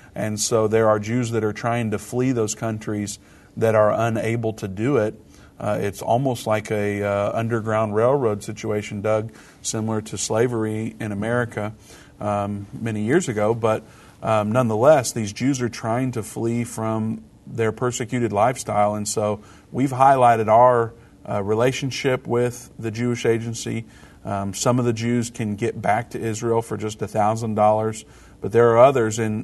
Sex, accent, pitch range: male, American, 105-120 Hz